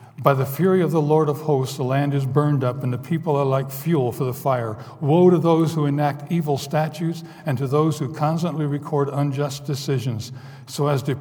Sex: male